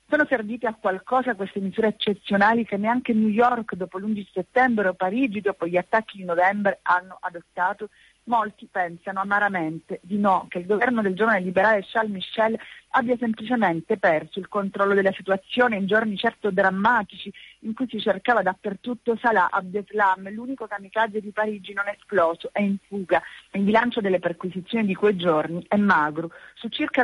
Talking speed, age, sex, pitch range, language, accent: 165 wpm, 40-59, female, 190-230 Hz, Italian, native